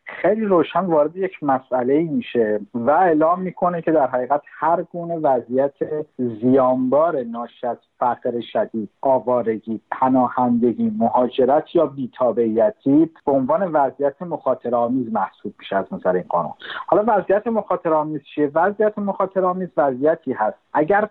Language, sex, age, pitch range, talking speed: Persian, male, 50-69, 120-165 Hz, 130 wpm